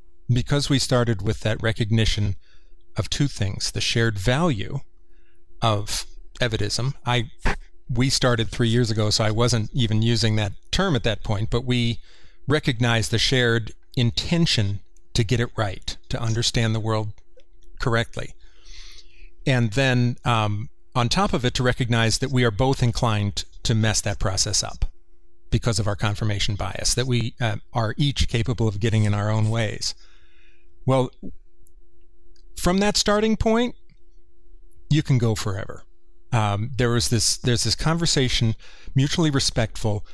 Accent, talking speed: American, 145 wpm